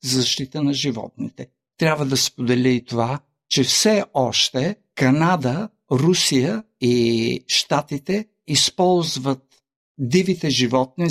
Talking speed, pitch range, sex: 105 wpm, 125-160 Hz, male